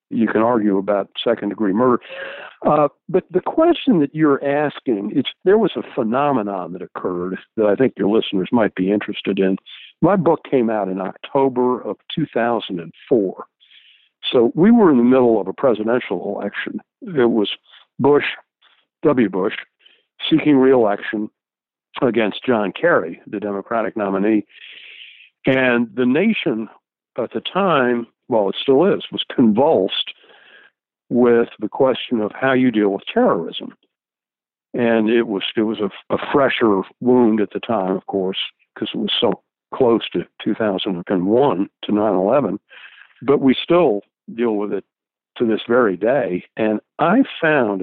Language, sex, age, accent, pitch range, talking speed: English, male, 60-79, American, 100-130 Hz, 145 wpm